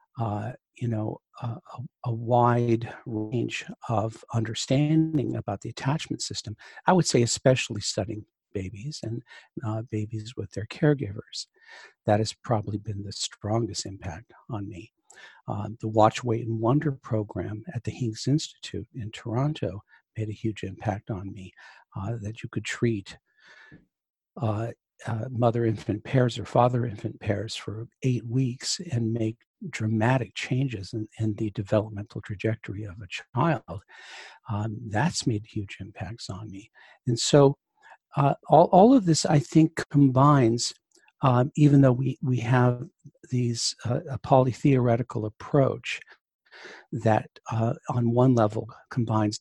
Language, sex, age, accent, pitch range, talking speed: English, male, 60-79, American, 110-130 Hz, 140 wpm